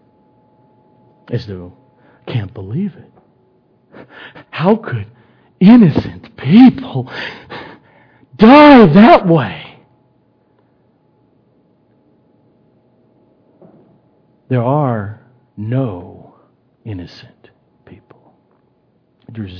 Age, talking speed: 60-79, 55 wpm